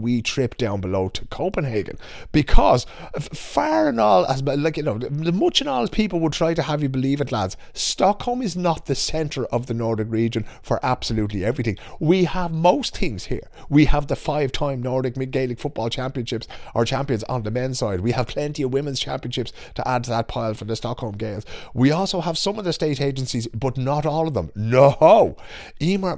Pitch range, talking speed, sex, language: 105-145 Hz, 215 wpm, male, English